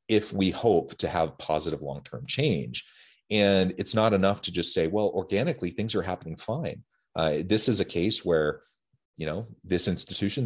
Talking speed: 180 wpm